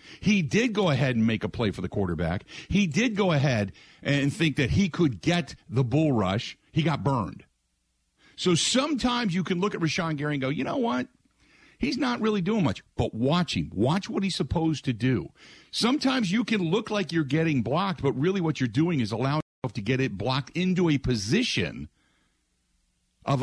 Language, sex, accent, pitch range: English, male, American, 125-180 Hz